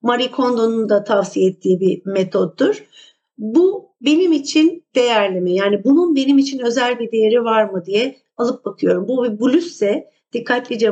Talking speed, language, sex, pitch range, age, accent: 155 wpm, Turkish, female, 215-300 Hz, 50-69, native